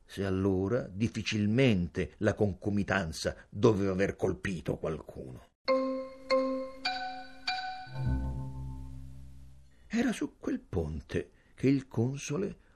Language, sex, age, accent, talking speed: Italian, male, 60-79, native, 75 wpm